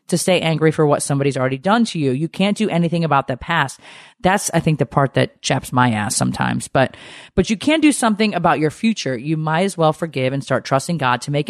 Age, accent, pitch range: 30-49, American, 130-170 Hz